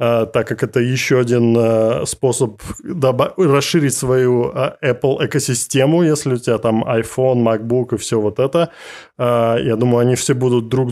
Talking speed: 135 wpm